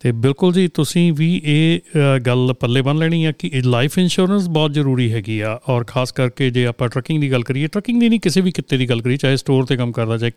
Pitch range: 125-155 Hz